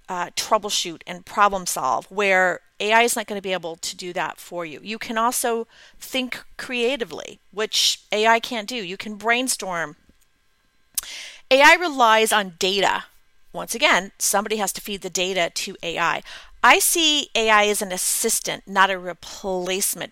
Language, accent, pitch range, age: English, American, 195-245 Hz, 40-59